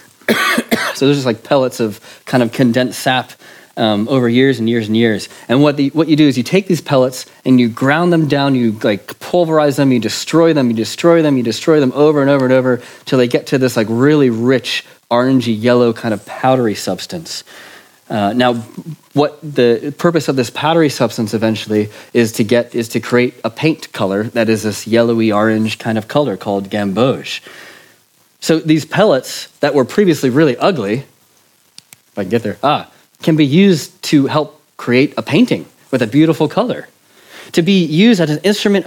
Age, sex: 30-49, male